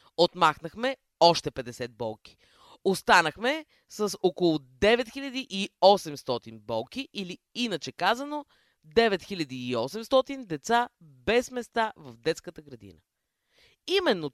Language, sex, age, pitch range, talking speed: Bulgarian, female, 20-39, 140-235 Hz, 85 wpm